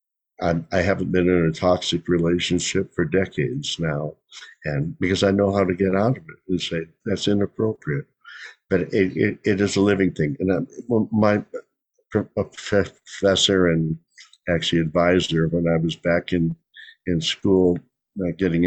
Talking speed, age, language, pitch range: 150 wpm, 60-79, English, 85-100 Hz